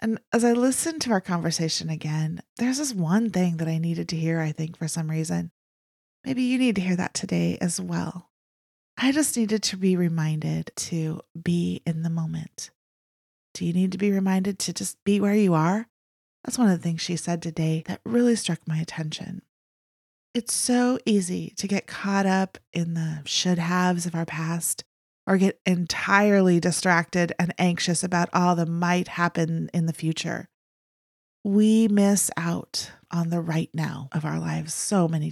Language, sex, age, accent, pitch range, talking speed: English, female, 30-49, American, 160-195 Hz, 180 wpm